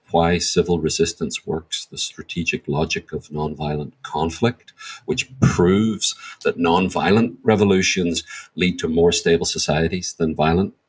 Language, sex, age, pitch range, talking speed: English, male, 40-59, 75-95 Hz, 120 wpm